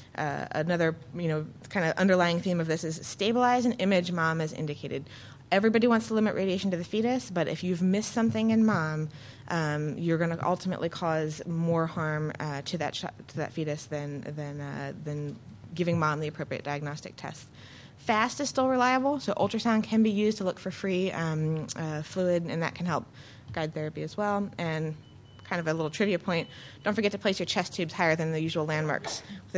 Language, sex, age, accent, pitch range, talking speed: English, female, 20-39, American, 155-200 Hz, 205 wpm